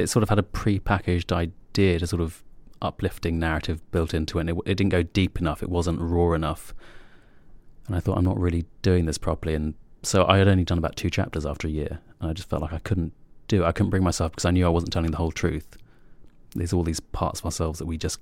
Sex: male